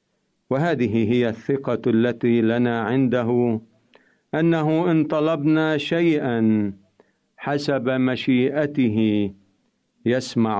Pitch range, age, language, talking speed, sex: 110-145 Hz, 50-69, Arabic, 75 wpm, male